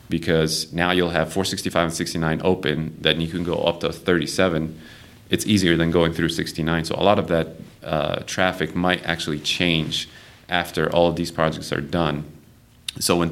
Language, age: English, 30-49